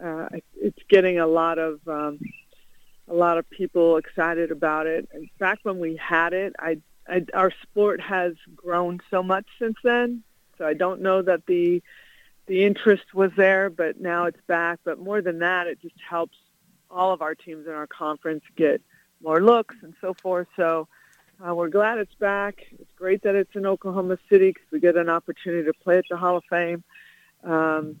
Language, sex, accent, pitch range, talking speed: English, female, American, 165-190 Hz, 195 wpm